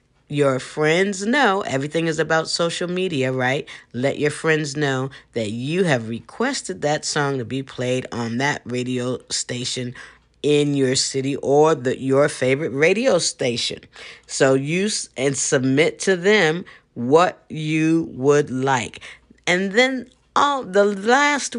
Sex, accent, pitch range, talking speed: female, American, 140-230 Hz, 140 wpm